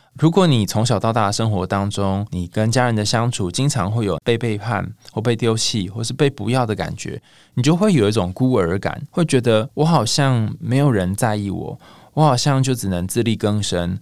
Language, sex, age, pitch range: Chinese, male, 20-39, 100-125 Hz